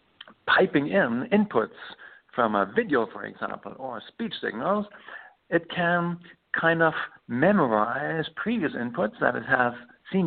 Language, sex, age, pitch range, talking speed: English, male, 60-79, 135-170 Hz, 130 wpm